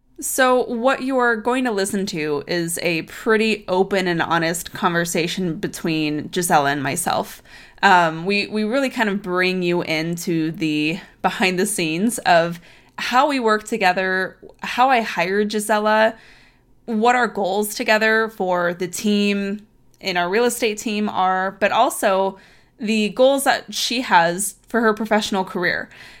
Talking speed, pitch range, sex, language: 145 wpm, 170-215 Hz, female, English